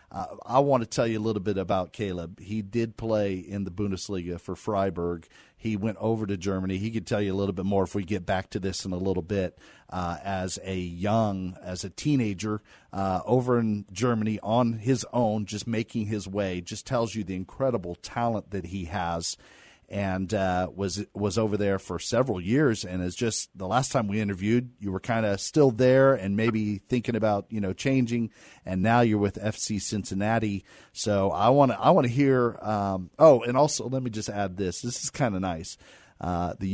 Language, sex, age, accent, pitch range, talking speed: English, male, 40-59, American, 95-120 Hz, 210 wpm